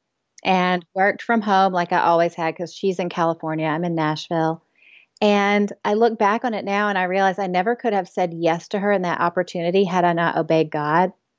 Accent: American